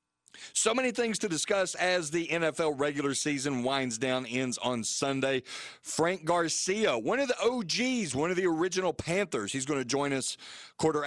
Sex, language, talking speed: male, English, 175 wpm